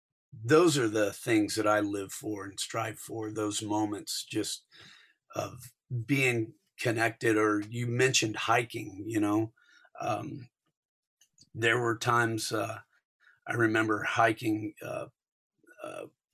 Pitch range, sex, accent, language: 105-120 Hz, male, American, English